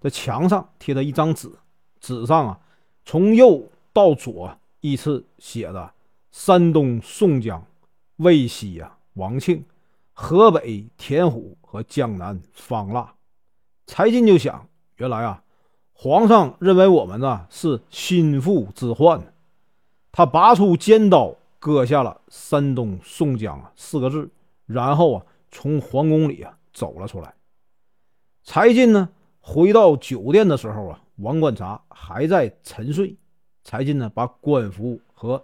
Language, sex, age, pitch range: Chinese, male, 40-59, 120-185 Hz